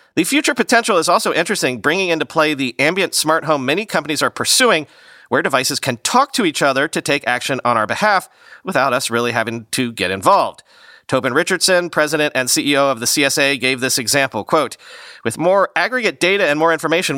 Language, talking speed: English, 195 wpm